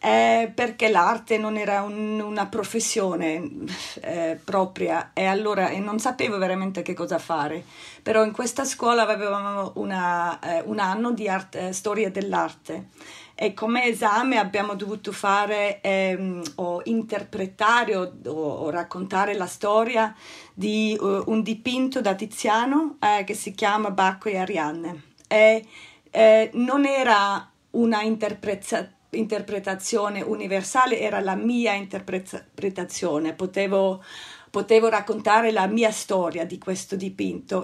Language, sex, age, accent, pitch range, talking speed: Italian, female, 40-59, native, 185-220 Hz, 130 wpm